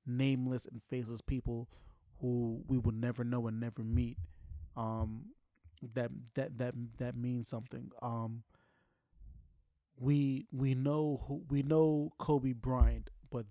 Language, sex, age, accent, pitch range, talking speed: English, male, 20-39, American, 115-130 Hz, 130 wpm